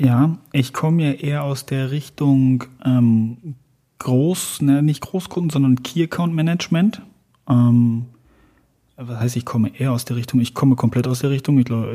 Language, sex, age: German, male, 30-49